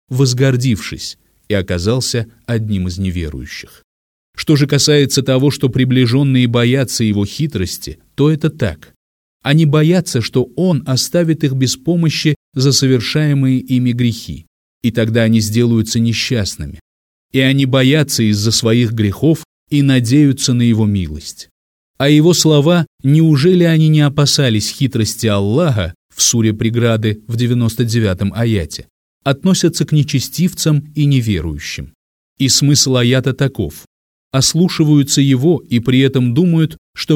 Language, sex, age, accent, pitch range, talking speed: Russian, male, 30-49, native, 110-145 Hz, 125 wpm